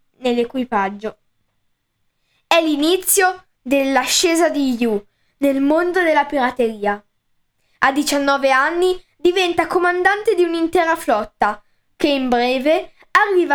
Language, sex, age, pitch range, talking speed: Italian, female, 10-29, 240-320 Hz, 95 wpm